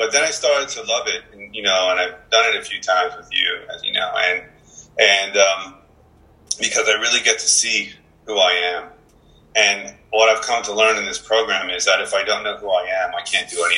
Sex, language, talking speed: male, English, 240 wpm